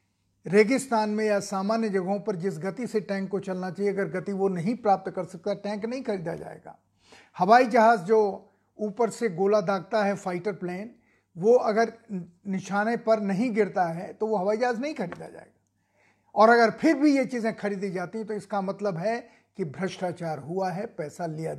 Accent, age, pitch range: native, 50-69, 185-225 Hz